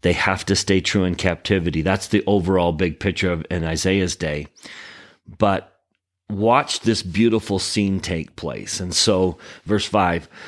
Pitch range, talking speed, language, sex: 90-105 Hz, 155 wpm, English, male